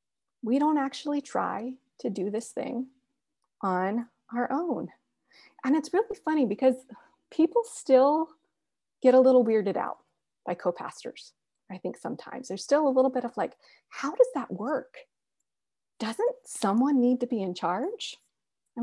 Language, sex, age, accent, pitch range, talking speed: English, female, 30-49, American, 245-330 Hz, 150 wpm